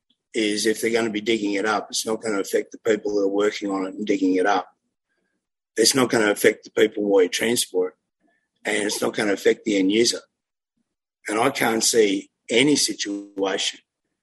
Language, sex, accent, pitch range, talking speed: English, male, Australian, 105-125 Hz, 215 wpm